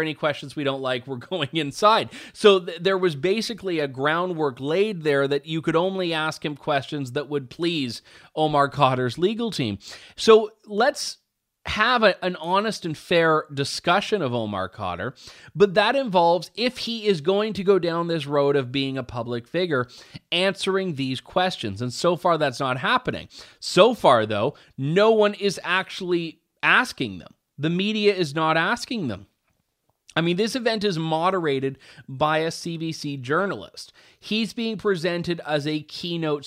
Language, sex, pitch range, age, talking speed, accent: English, male, 145-195 Hz, 30-49, 160 wpm, American